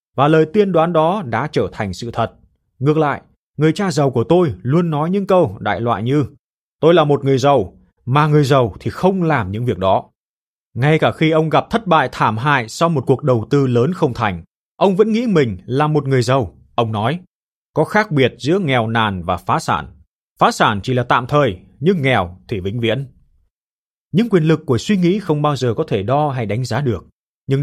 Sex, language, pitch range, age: male, Vietnamese, 115-155 Hz, 20-39